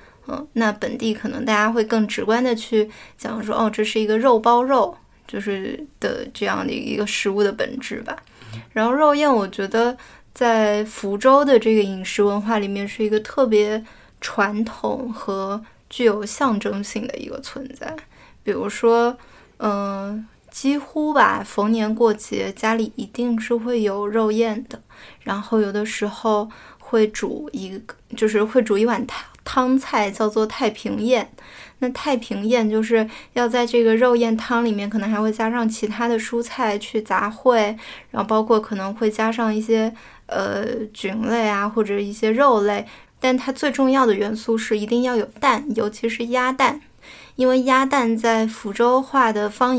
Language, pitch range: Chinese, 215-245 Hz